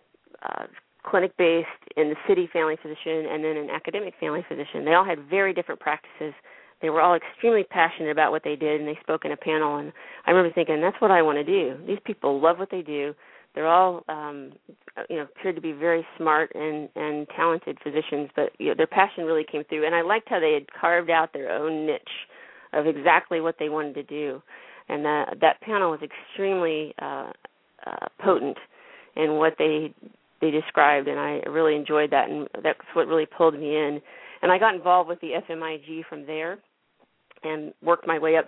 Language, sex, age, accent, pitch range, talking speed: English, female, 40-59, American, 155-175 Hz, 205 wpm